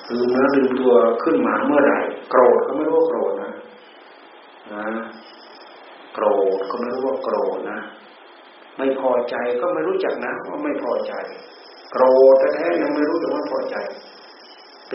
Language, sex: Thai, male